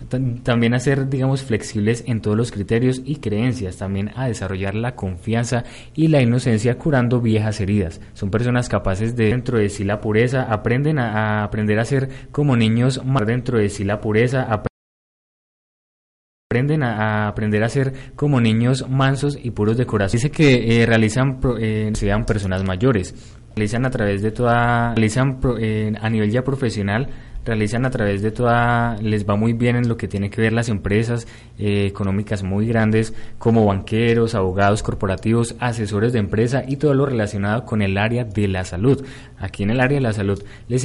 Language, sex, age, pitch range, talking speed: Spanish, male, 20-39, 105-125 Hz, 180 wpm